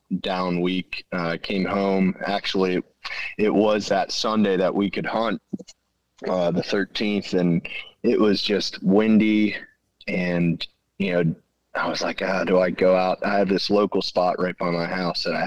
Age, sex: 20-39, male